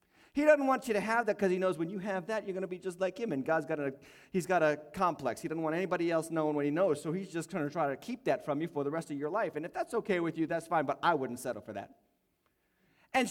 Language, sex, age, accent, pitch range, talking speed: English, male, 30-49, American, 180-260 Hz, 305 wpm